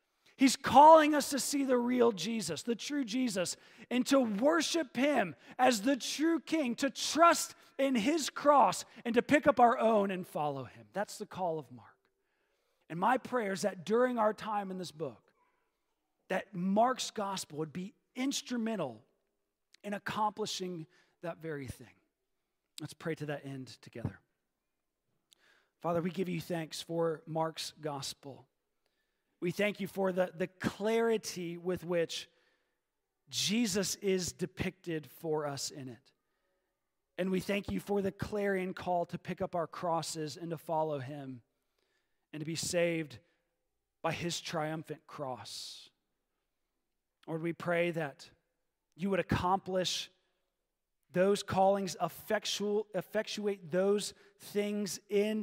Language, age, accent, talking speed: English, 40-59, American, 140 wpm